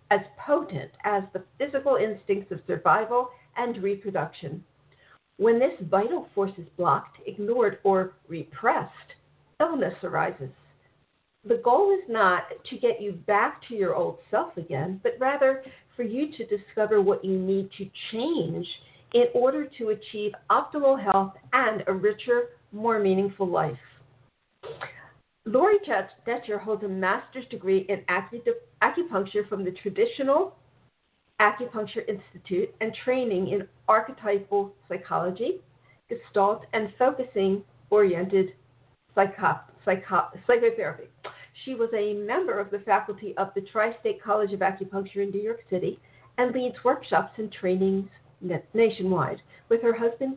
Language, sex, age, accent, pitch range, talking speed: English, female, 50-69, American, 190-240 Hz, 125 wpm